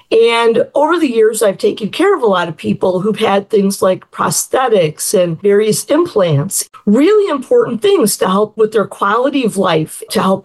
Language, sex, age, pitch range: English, female, 50-69, 190-245 Hz